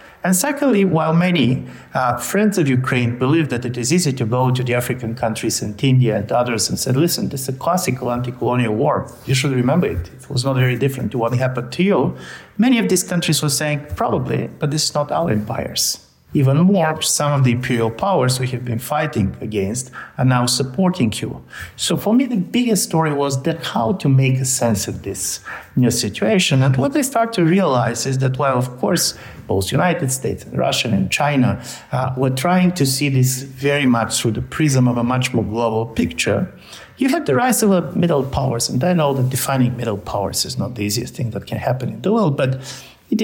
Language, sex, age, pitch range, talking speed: English, male, 60-79, 120-150 Hz, 215 wpm